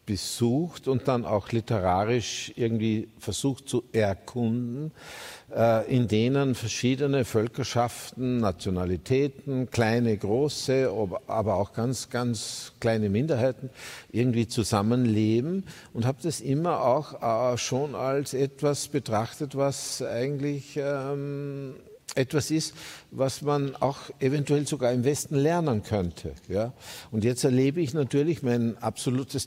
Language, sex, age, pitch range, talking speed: German, male, 50-69, 110-140 Hz, 110 wpm